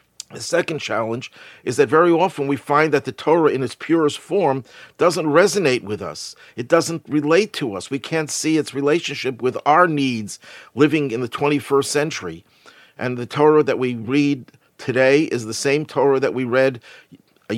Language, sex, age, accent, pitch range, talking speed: English, male, 50-69, American, 120-155 Hz, 180 wpm